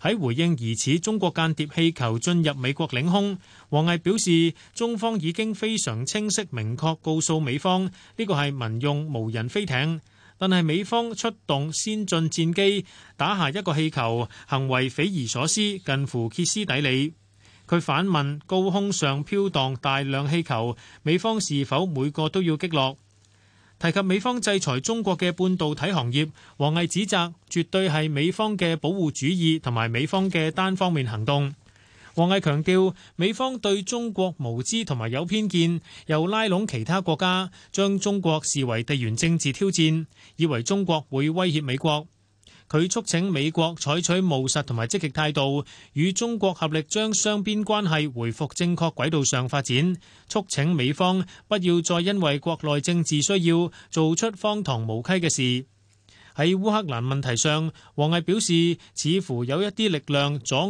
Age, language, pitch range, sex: 30-49, Chinese, 135-185 Hz, male